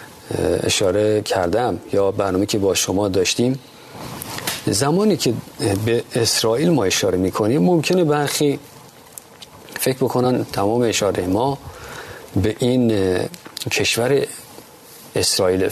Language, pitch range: Persian, 115-150 Hz